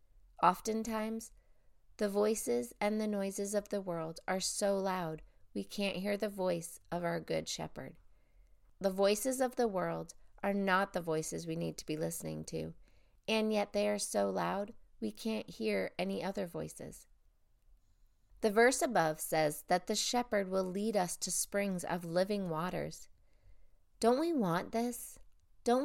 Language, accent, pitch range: English, American, 150-210 Hz